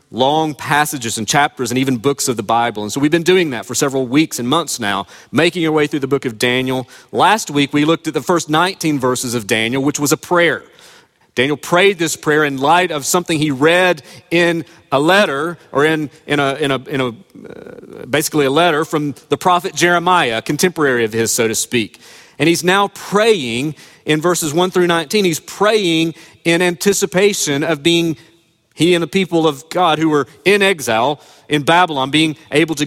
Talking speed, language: 205 wpm, English